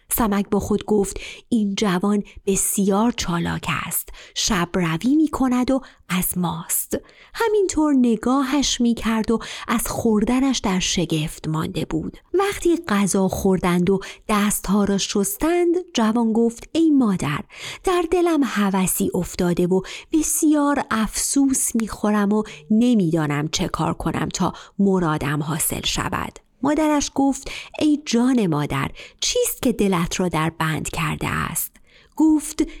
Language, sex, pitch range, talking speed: Persian, female, 185-260 Hz, 125 wpm